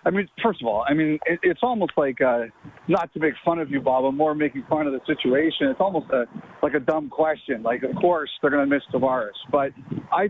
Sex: male